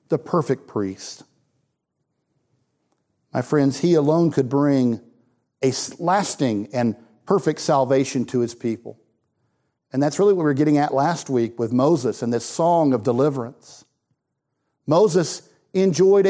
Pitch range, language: 120-150 Hz, English